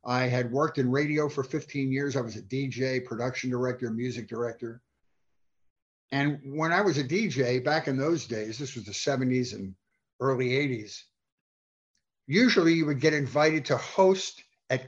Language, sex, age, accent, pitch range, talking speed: English, male, 50-69, American, 125-160 Hz, 165 wpm